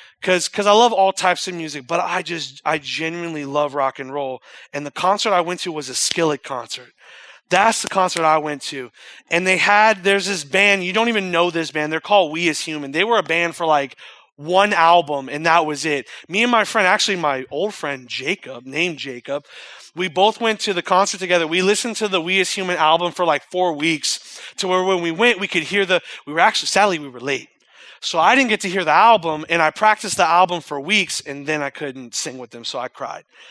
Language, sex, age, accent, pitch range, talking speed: English, male, 30-49, American, 155-210 Hz, 235 wpm